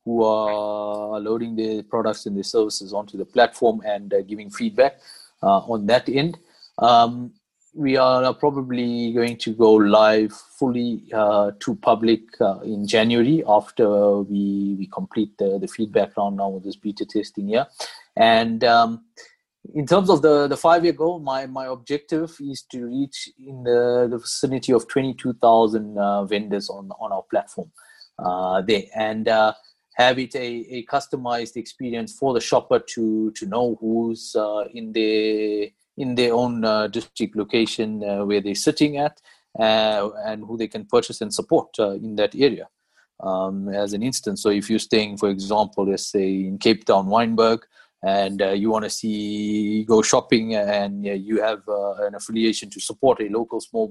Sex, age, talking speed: male, 30-49, 170 wpm